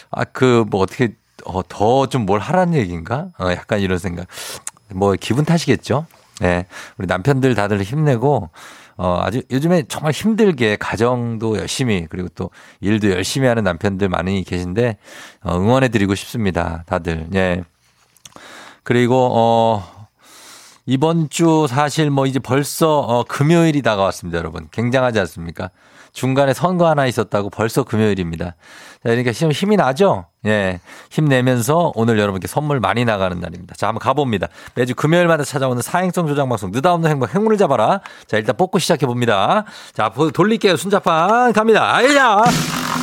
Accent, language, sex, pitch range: native, Korean, male, 100-160 Hz